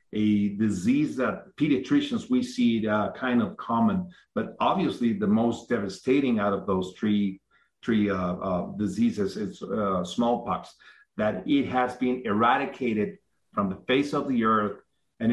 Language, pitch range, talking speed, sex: English, 105-175 Hz, 150 wpm, male